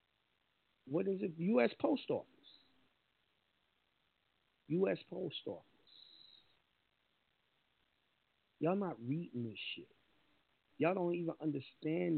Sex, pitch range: male, 135-170 Hz